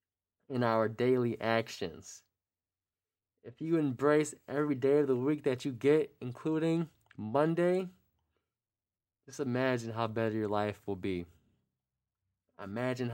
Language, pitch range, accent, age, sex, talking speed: English, 105-140 Hz, American, 20-39, male, 120 wpm